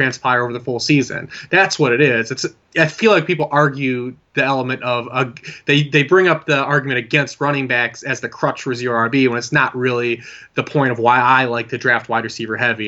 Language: English